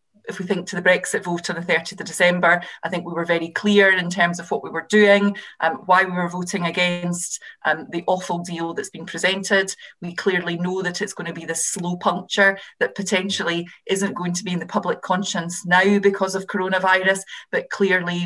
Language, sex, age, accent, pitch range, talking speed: English, female, 30-49, British, 165-190 Hz, 215 wpm